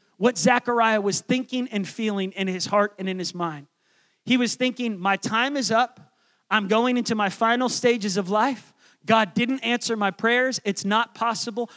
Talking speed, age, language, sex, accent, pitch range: 185 wpm, 30-49, English, male, American, 190-245 Hz